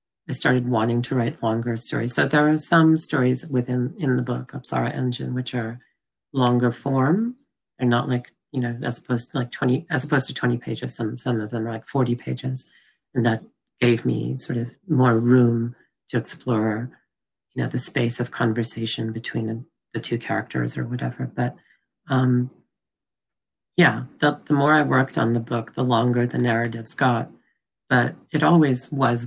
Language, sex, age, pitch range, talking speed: English, female, 40-59, 115-130 Hz, 180 wpm